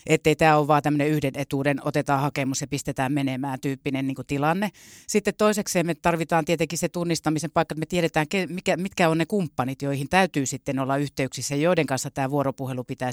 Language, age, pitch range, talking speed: Finnish, 30-49, 140-165 Hz, 185 wpm